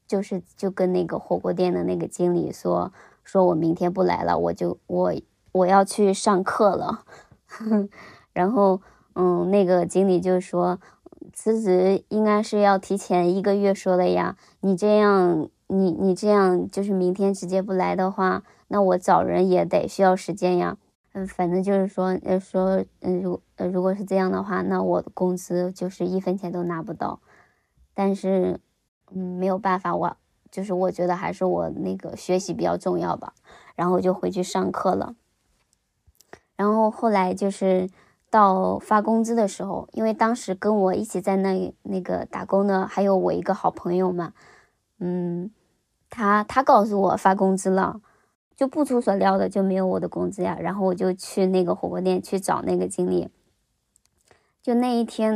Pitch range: 180-200 Hz